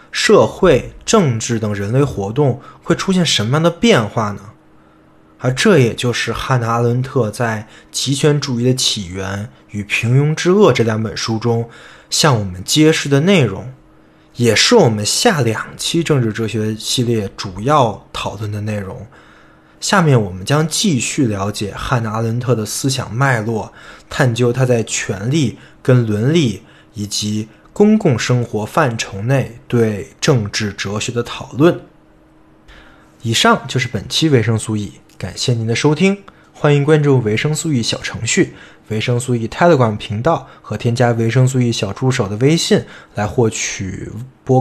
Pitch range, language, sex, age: 110-145 Hz, Chinese, male, 20-39